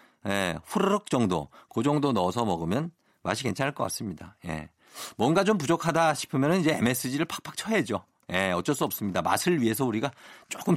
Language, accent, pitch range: Korean, native, 105-160 Hz